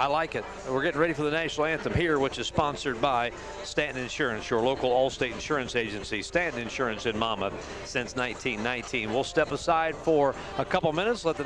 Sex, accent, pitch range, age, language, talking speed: male, American, 140-200 Hz, 50-69, English, 195 wpm